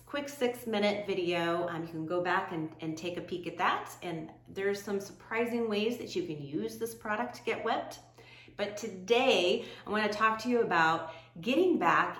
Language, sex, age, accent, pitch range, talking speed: English, female, 30-49, American, 165-215 Hz, 195 wpm